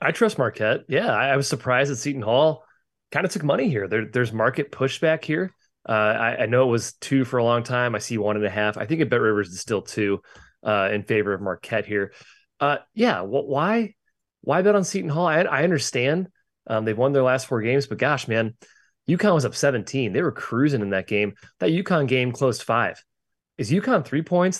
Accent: American